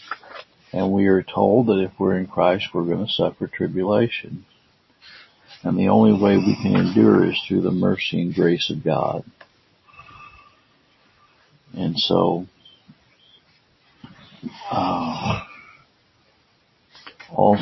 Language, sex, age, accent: English, male, 60-79, American